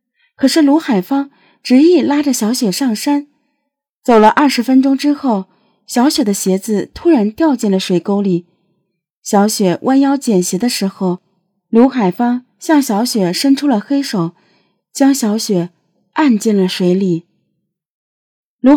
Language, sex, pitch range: Chinese, female, 185-250 Hz